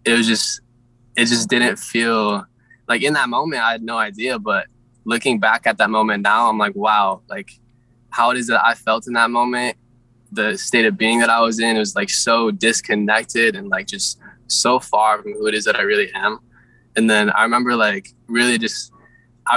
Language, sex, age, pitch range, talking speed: English, male, 10-29, 110-125 Hz, 210 wpm